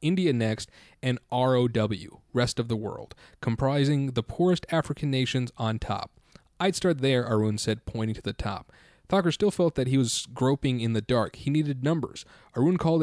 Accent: American